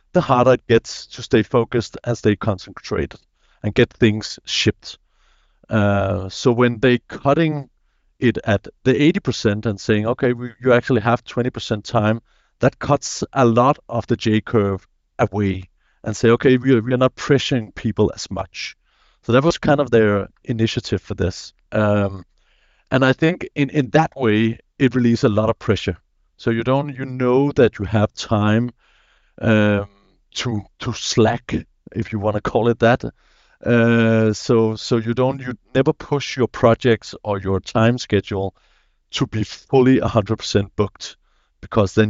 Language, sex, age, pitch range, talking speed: English, male, 50-69, 105-125 Hz, 165 wpm